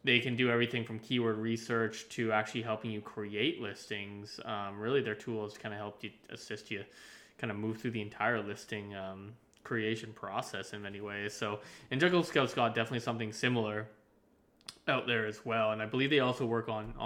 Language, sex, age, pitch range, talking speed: English, male, 20-39, 110-125 Hz, 195 wpm